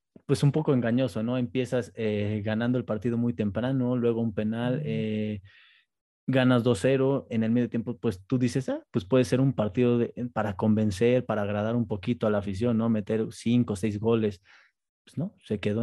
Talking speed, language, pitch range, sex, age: 195 wpm, Spanish, 110-125 Hz, male, 20-39